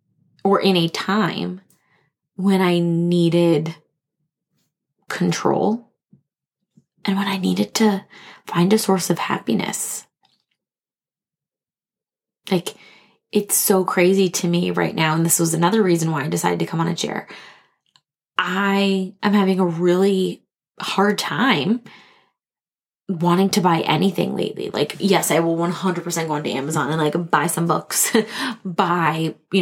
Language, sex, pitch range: English, female, 170-200 Hz